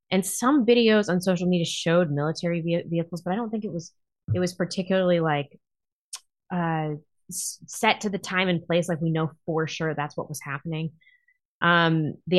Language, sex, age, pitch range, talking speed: English, female, 20-39, 155-190 Hz, 180 wpm